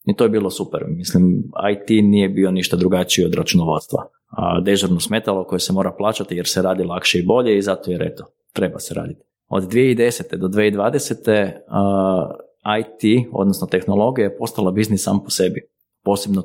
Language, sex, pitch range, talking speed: Croatian, male, 95-110 Hz, 170 wpm